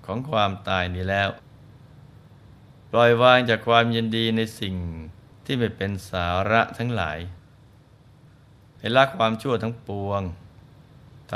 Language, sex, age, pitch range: Thai, male, 20-39, 100-125 Hz